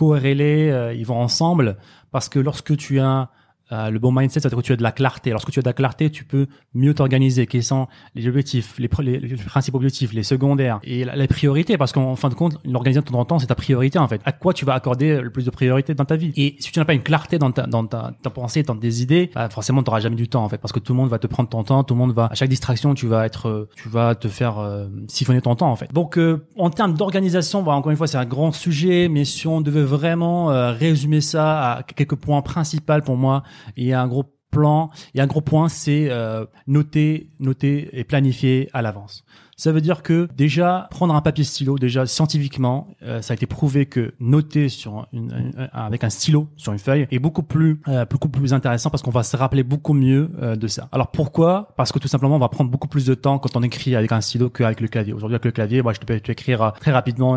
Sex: male